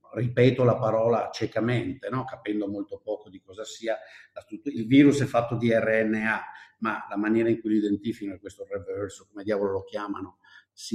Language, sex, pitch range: Italian, male, 105-140 Hz